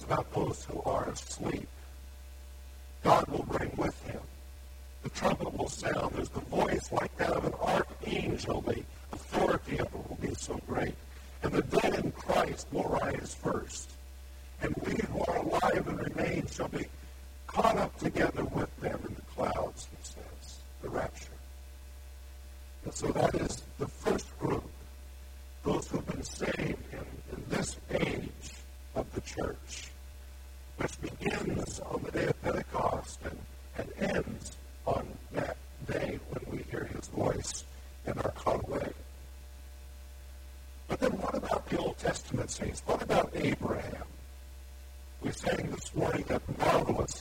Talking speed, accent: 145 wpm, American